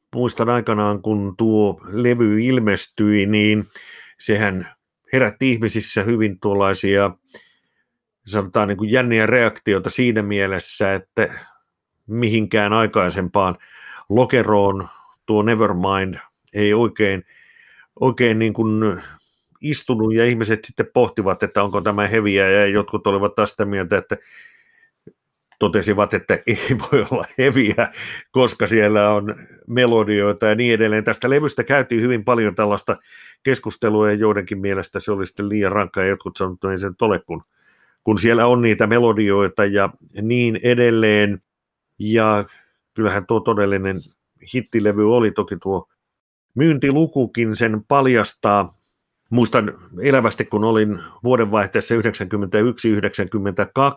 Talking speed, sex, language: 120 wpm, male, Finnish